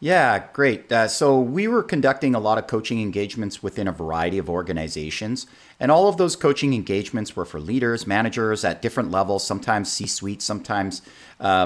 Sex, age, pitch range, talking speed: male, 40-59, 95-130 Hz, 175 wpm